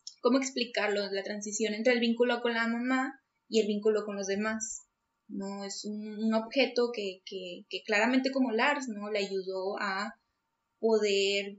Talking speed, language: 165 wpm, Spanish